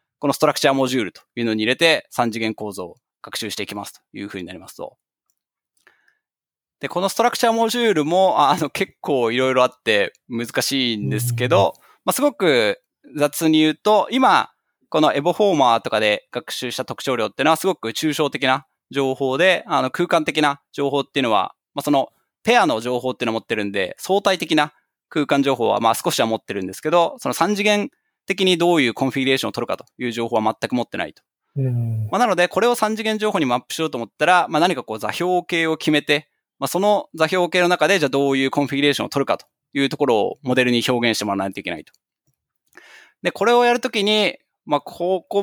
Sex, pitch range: male, 120-180 Hz